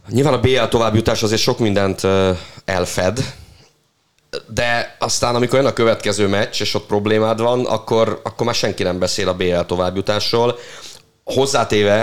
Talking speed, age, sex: 145 wpm, 30-49, male